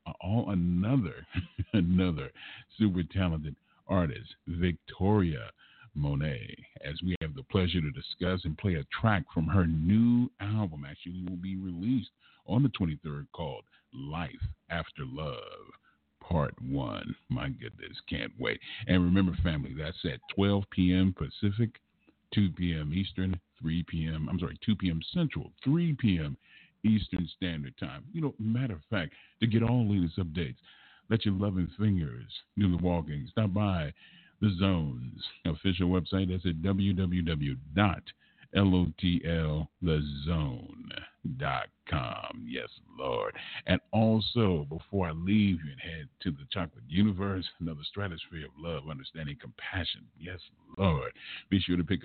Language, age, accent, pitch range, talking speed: English, 50-69, American, 80-100 Hz, 135 wpm